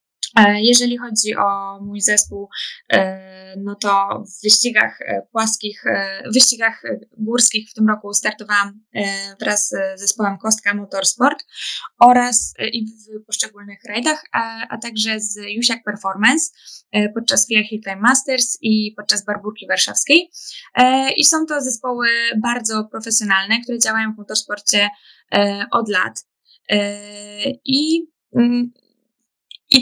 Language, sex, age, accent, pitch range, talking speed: Polish, female, 10-29, native, 205-240 Hz, 110 wpm